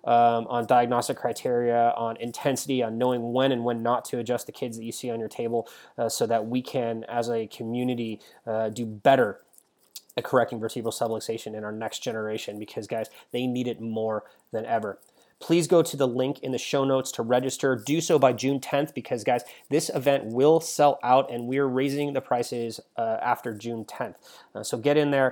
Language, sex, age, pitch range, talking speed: English, male, 30-49, 115-135 Hz, 205 wpm